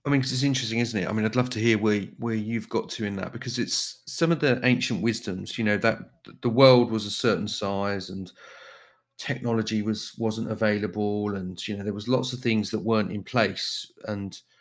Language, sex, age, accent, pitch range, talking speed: English, male, 40-59, British, 100-120 Hz, 220 wpm